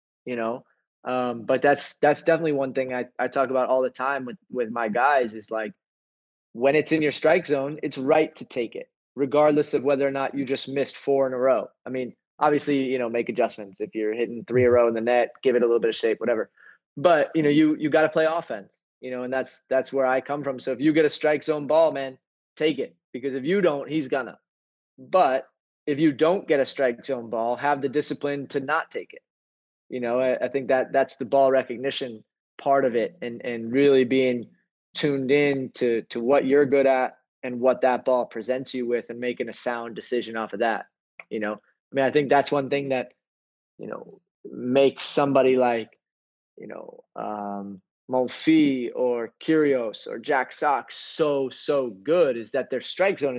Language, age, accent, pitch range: English, 20-39, American, 125-150 Hz